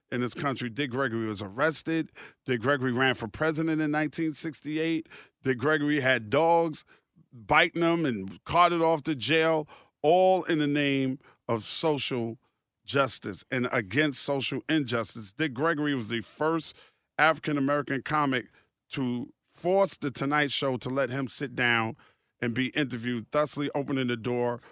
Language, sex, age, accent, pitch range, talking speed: English, male, 40-59, American, 120-145 Hz, 150 wpm